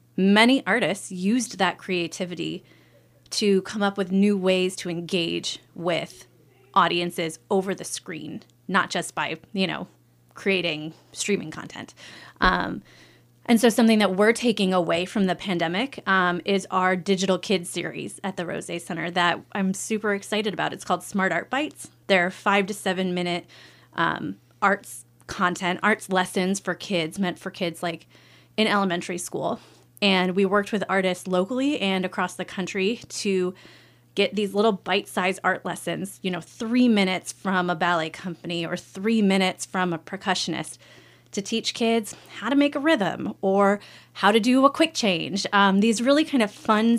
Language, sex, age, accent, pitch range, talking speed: English, female, 30-49, American, 175-205 Hz, 165 wpm